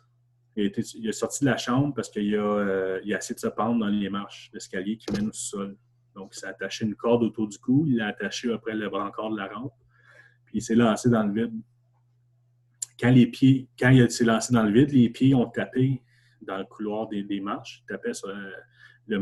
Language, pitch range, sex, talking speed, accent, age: French, 110-125 Hz, male, 240 wpm, Canadian, 30-49